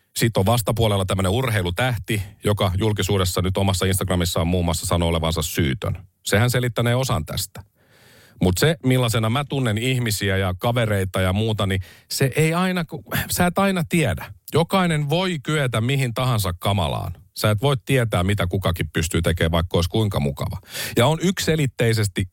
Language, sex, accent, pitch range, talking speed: Finnish, male, native, 95-130 Hz, 155 wpm